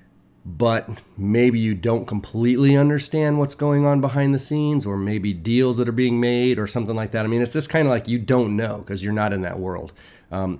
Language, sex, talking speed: English, male, 225 wpm